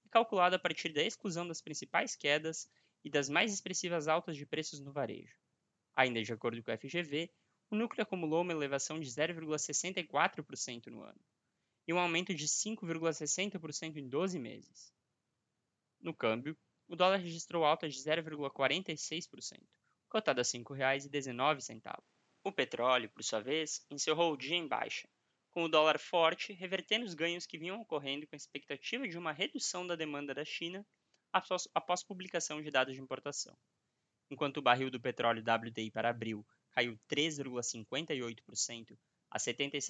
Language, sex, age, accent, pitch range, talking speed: Portuguese, male, 20-39, Brazilian, 135-175 Hz, 150 wpm